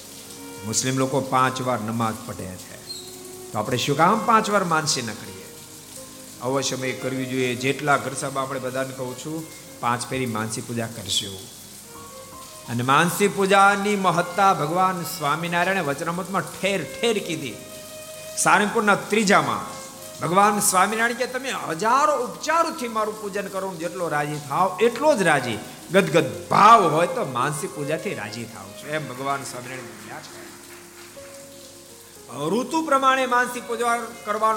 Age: 50-69